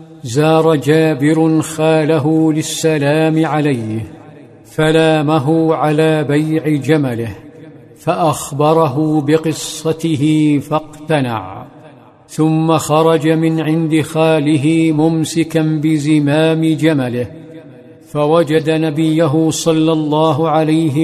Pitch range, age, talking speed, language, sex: 145-160 Hz, 50-69, 70 wpm, Arabic, male